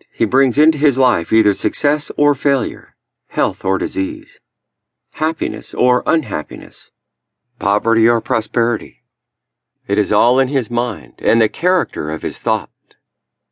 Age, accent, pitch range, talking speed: 50-69, American, 110-155 Hz, 135 wpm